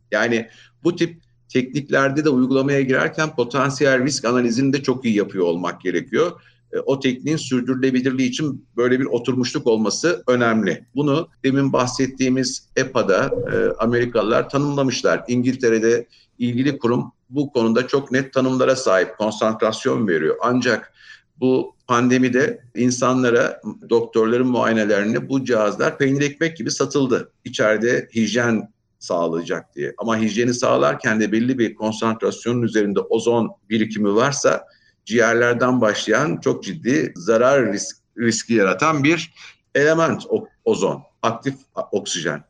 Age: 50-69